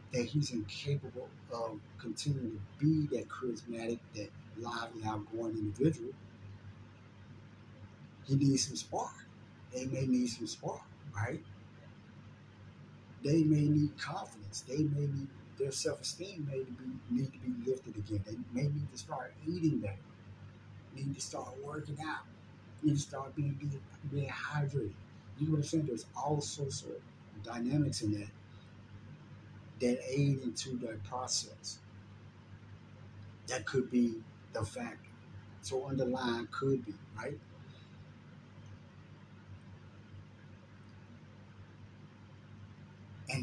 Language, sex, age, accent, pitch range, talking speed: English, male, 30-49, American, 105-135 Hz, 115 wpm